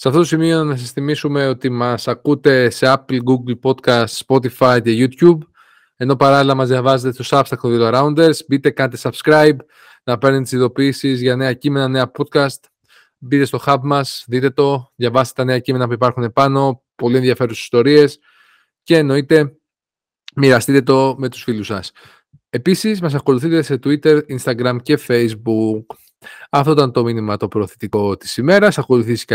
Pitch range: 125-150 Hz